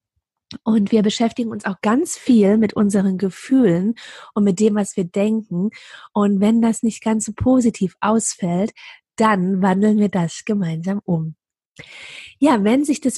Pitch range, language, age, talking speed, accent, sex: 200-245 Hz, German, 30-49, 155 wpm, German, female